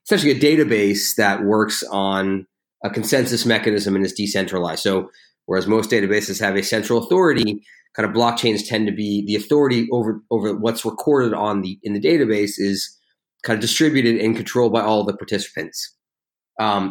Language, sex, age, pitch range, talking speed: English, male, 30-49, 100-115 Hz, 170 wpm